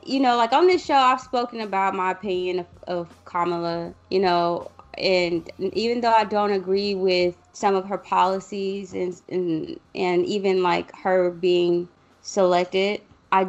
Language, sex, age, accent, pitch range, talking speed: English, female, 20-39, American, 175-200 Hz, 160 wpm